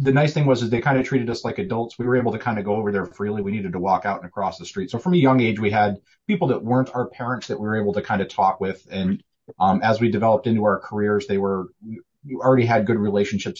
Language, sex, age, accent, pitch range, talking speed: English, male, 30-49, American, 100-125 Hz, 295 wpm